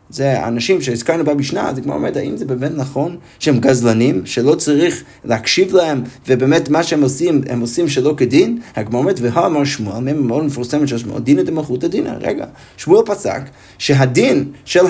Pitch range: 125-185 Hz